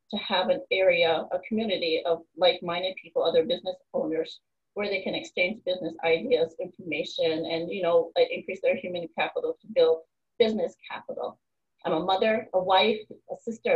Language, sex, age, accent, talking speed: English, female, 30-49, American, 160 wpm